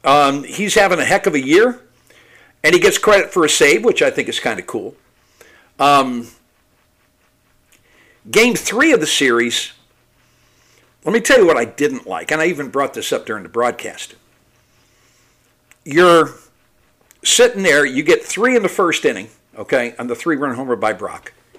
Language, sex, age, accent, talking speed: English, male, 60-79, American, 170 wpm